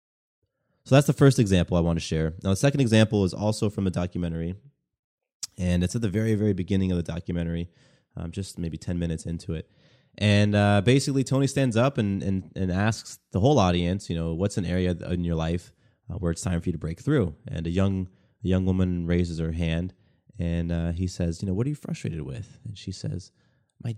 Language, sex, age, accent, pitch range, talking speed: English, male, 20-39, American, 85-110 Hz, 220 wpm